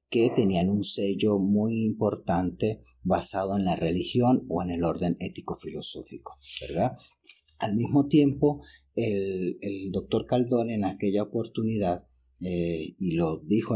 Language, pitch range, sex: Spanish, 90-105 Hz, male